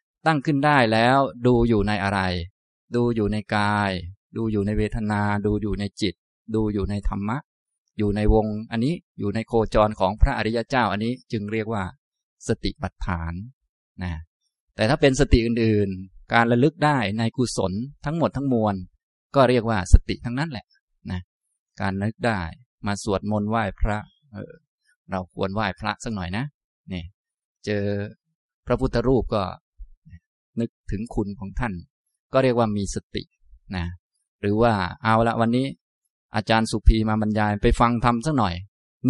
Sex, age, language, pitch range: male, 20-39, Thai, 95-120 Hz